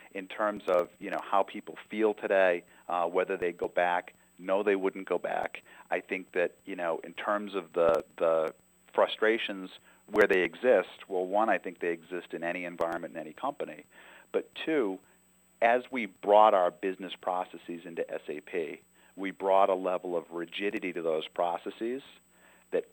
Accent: American